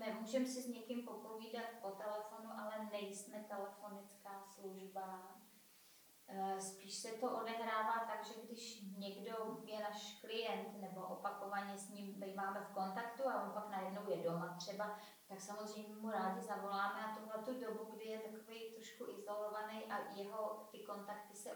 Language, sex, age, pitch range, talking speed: Czech, female, 20-39, 200-225 Hz, 155 wpm